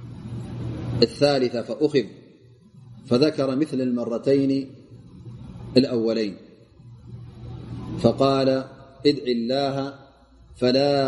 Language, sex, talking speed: Amharic, male, 55 wpm